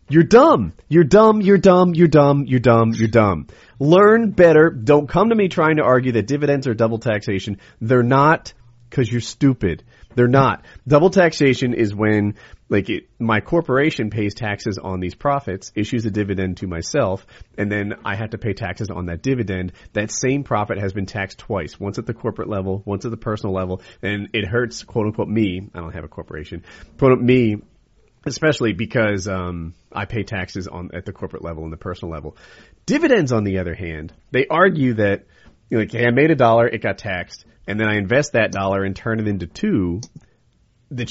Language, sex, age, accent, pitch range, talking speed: English, male, 30-49, American, 100-130 Hz, 200 wpm